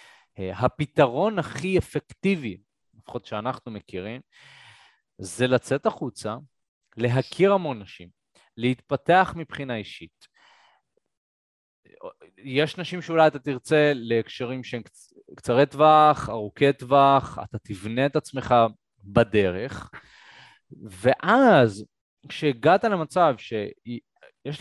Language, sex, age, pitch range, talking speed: Hebrew, male, 30-49, 110-155 Hz, 85 wpm